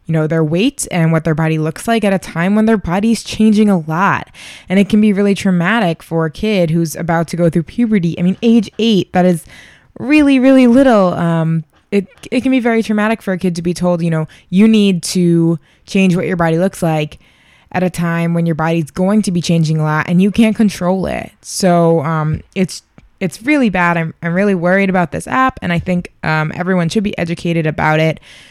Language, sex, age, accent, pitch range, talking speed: English, female, 20-39, American, 160-200 Hz, 225 wpm